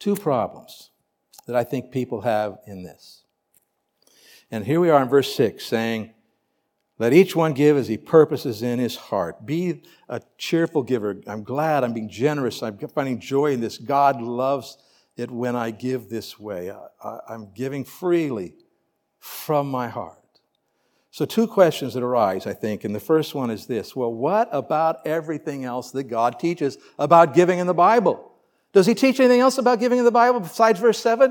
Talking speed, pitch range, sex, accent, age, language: 180 wpm, 120-185 Hz, male, American, 60-79, English